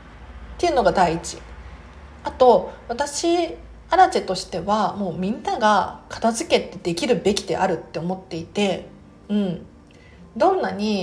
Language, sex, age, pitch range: Japanese, female, 40-59, 180-240 Hz